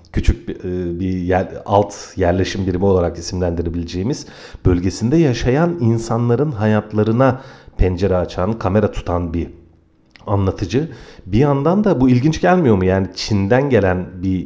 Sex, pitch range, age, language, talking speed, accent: male, 95-135 Hz, 40-59, Turkish, 125 wpm, native